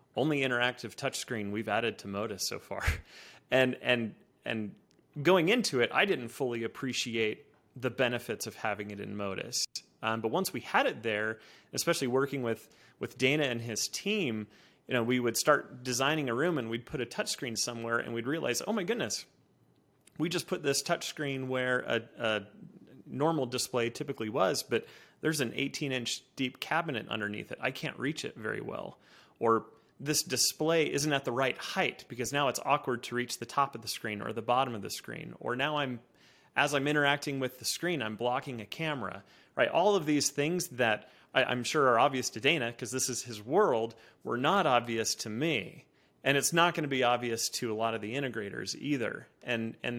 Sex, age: male, 30-49